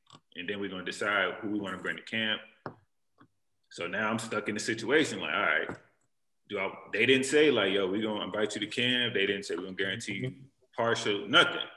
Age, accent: 20-39, American